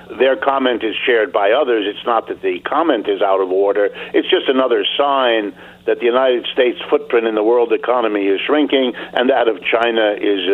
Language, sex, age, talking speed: English, male, 60-79, 200 wpm